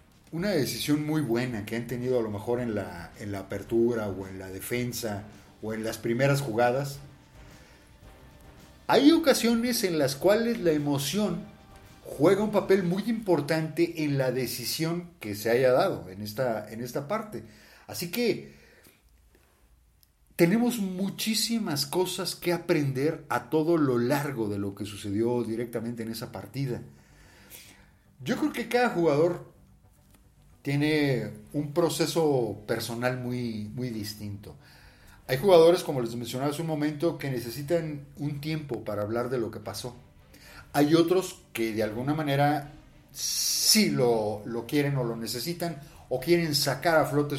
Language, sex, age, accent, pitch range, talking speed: Spanish, male, 40-59, Mexican, 110-160 Hz, 145 wpm